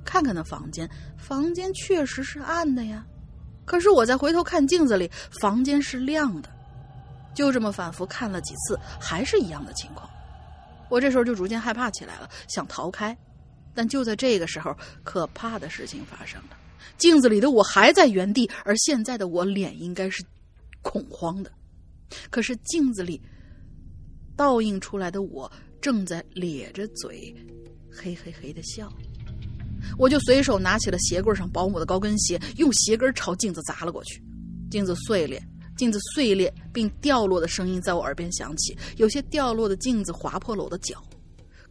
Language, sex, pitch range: Chinese, female, 170-255 Hz